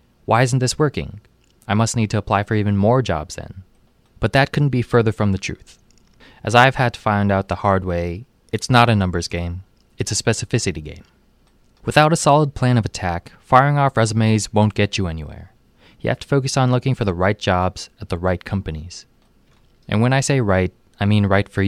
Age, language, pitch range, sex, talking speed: 20-39, English, 95-125 Hz, male, 210 wpm